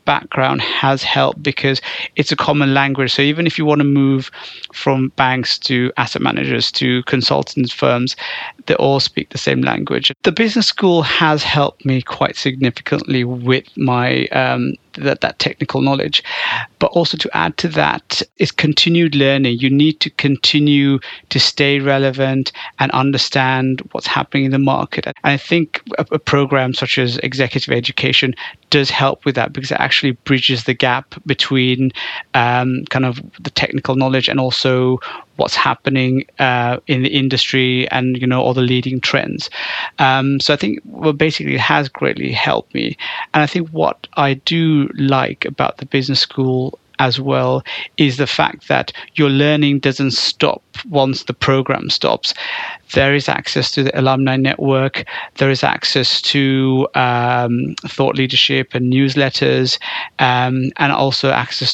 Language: English